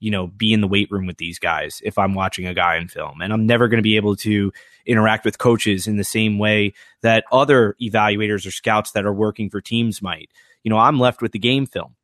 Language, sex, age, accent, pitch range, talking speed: English, male, 20-39, American, 105-125 Hz, 255 wpm